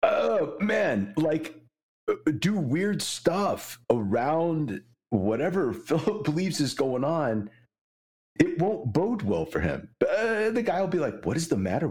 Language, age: English, 40-59